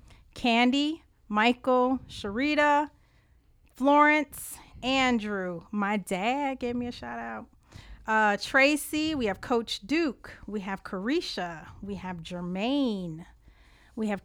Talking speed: 110 wpm